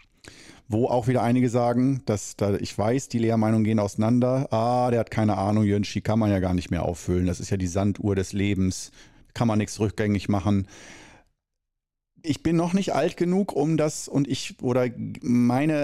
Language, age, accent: German, 40-59, German